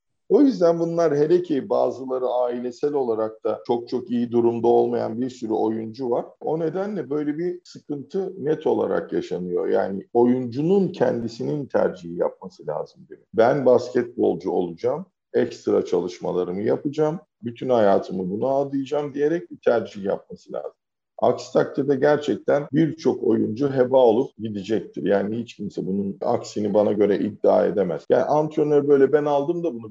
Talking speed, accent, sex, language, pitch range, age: 140 wpm, Turkish, male, English, 120-160 Hz, 50-69